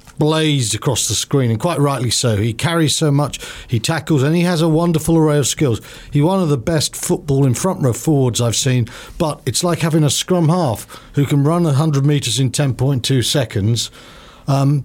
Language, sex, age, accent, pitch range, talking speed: English, male, 50-69, British, 120-150 Hz, 200 wpm